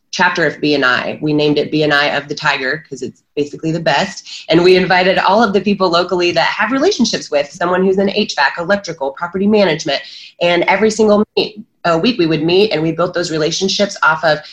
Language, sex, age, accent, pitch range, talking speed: English, female, 30-49, American, 160-200 Hz, 205 wpm